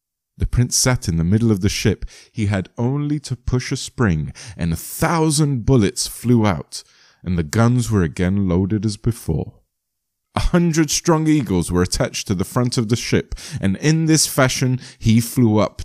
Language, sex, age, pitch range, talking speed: English, male, 30-49, 95-135 Hz, 185 wpm